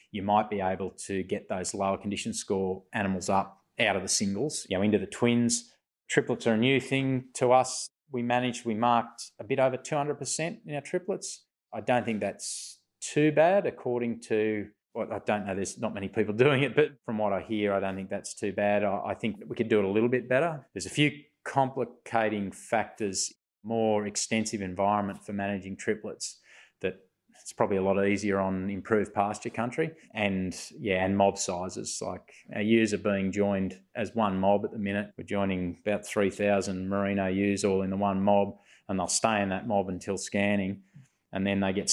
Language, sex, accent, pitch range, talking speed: English, male, Australian, 100-115 Hz, 195 wpm